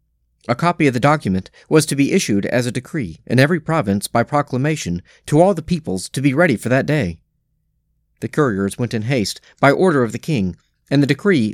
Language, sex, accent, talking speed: English, male, American, 210 wpm